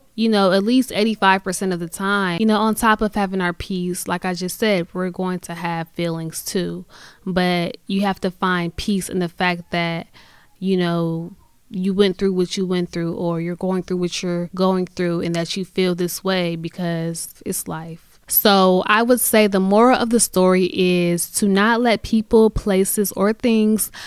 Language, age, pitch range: English, 10-29, 180-205 Hz